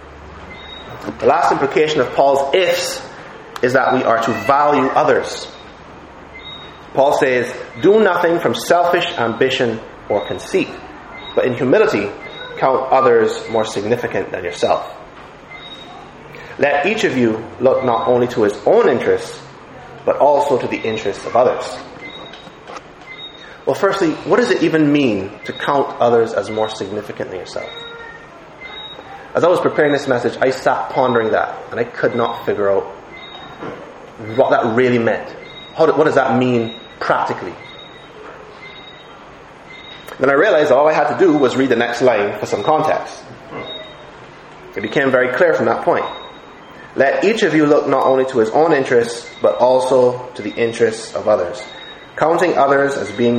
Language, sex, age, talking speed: English, male, 30-49, 150 wpm